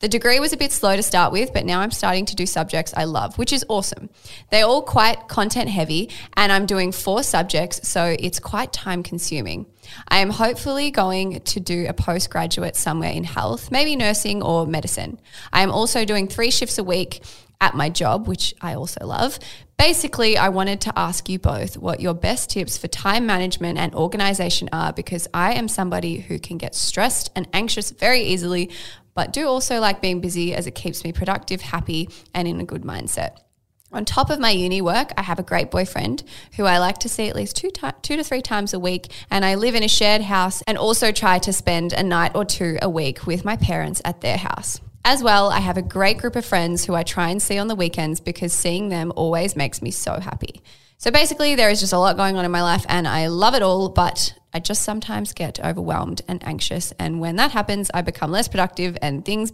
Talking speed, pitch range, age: 225 wpm, 175-210 Hz, 20-39